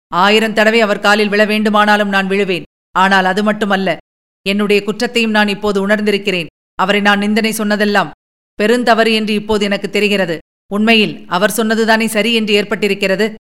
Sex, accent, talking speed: female, native, 140 wpm